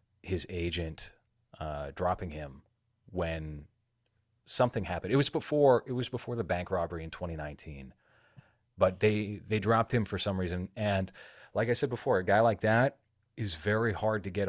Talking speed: 170 wpm